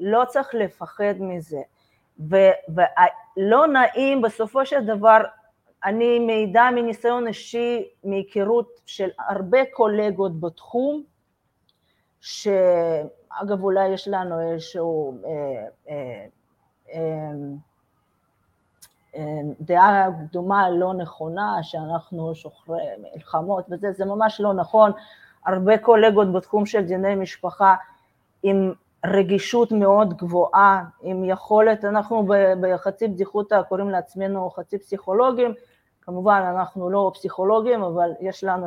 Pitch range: 175-225 Hz